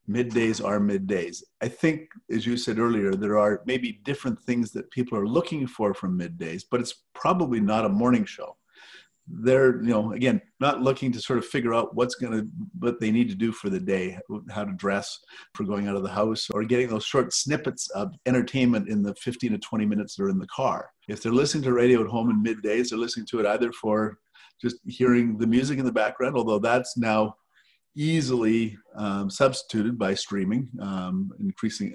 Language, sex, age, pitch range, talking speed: English, male, 50-69, 105-130 Hz, 205 wpm